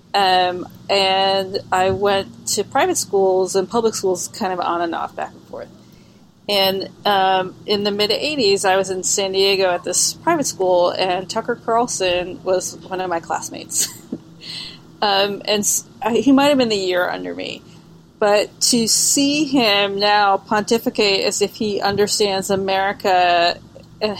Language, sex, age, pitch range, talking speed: English, female, 30-49, 175-210 Hz, 155 wpm